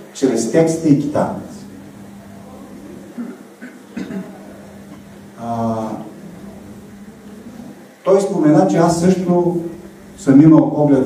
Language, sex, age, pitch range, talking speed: Bulgarian, male, 40-59, 130-175 Hz, 65 wpm